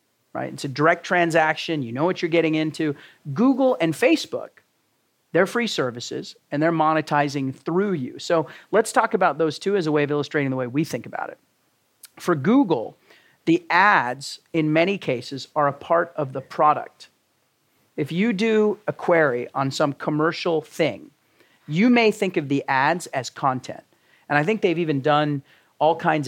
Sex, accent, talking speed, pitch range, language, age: male, American, 175 wpm, 145-180 Hz, English, 40-59